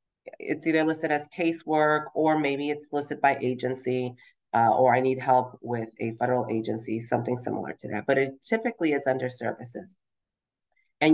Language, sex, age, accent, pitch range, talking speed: English, female, 40-59, American, 125-165 Hz, 165 wpm